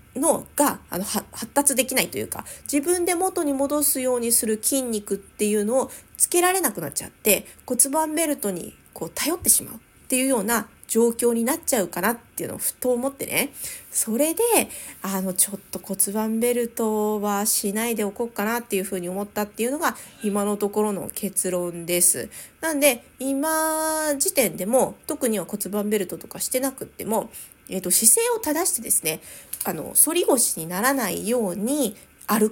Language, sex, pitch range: Japanese, female, 205-280 Hz